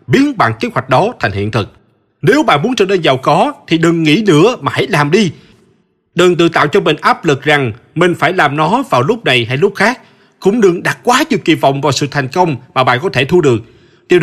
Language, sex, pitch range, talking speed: Vietnamese, male, 130-195 Hz, 250 wpm